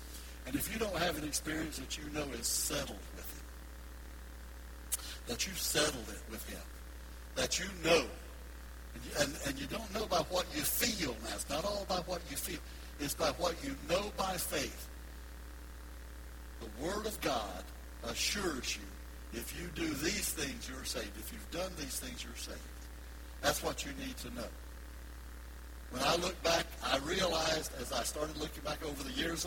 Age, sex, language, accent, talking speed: 60-79, male, English, American, 180 wpm